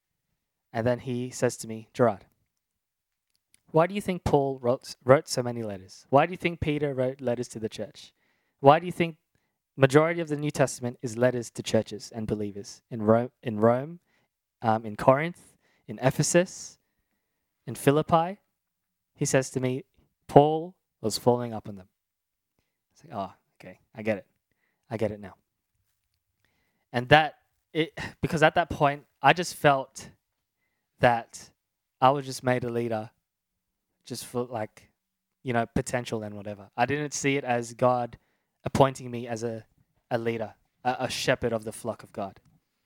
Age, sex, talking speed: 20-39, male, 170 wpm